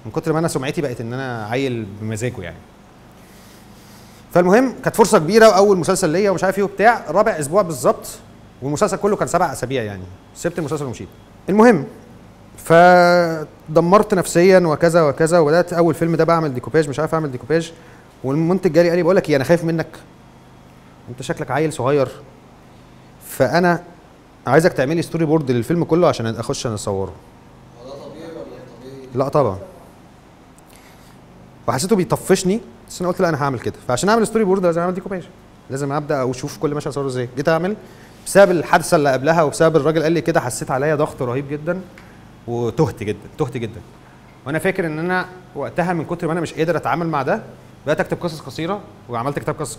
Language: Arabic